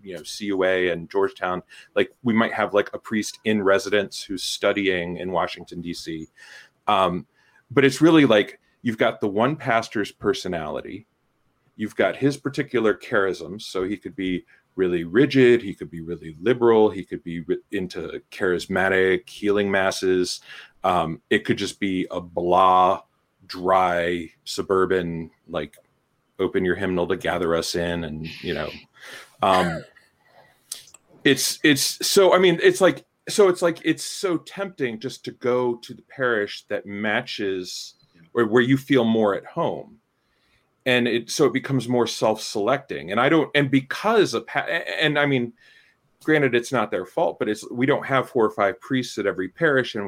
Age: 30-49